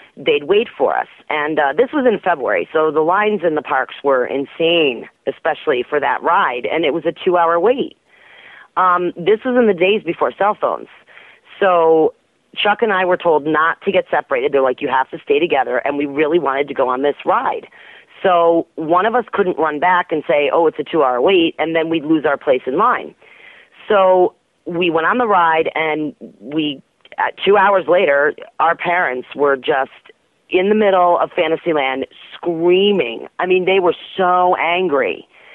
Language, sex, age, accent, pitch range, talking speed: English, female, 40-59, American, 165-215 Hz, 190 wpm